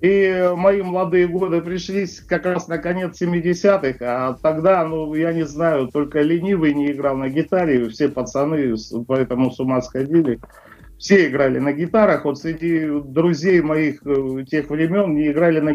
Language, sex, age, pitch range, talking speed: Russian, male, 50-69, 145-180 Hz, 155 wpm